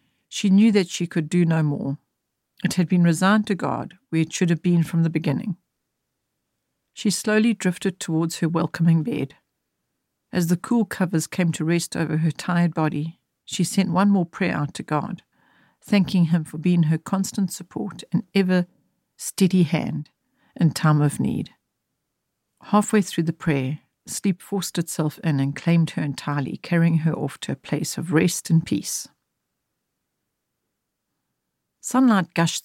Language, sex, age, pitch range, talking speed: English, female, 60-79, 155-185 Hz, 160 wpm